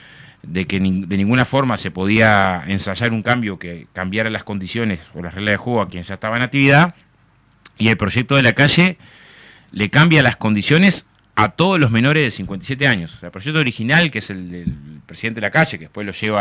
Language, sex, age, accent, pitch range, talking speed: Spanish, male, 30-49, Argentinian, 100-145 Hz, 210 wpm